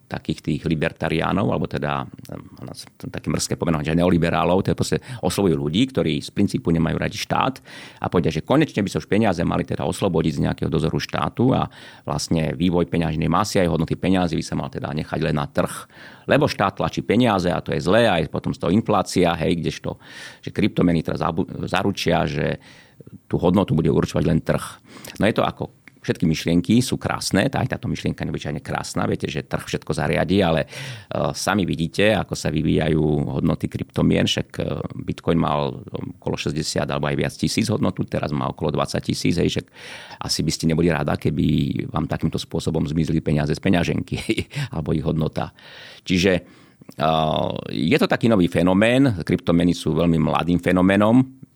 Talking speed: 180 wpm